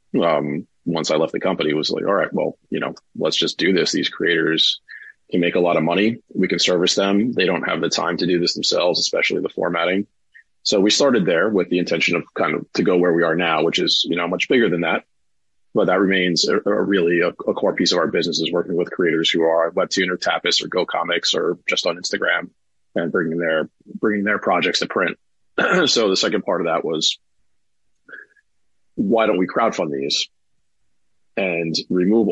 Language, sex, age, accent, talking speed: English, male, 30-49, American, 215 wpm